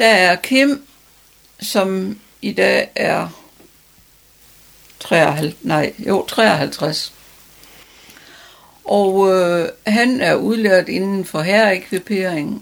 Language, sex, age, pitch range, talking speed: Danish, female, 70-89, 170-215 Hz, 90 wpm